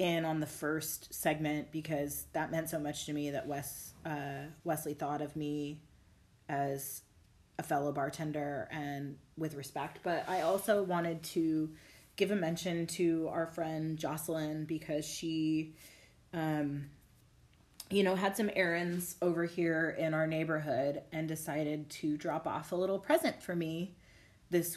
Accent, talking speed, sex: American, 150 wpm, female